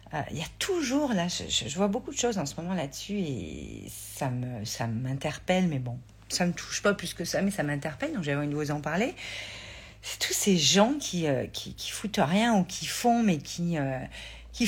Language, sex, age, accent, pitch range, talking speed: French, female, 50-69, French, 145-215 Hz, 235 wpm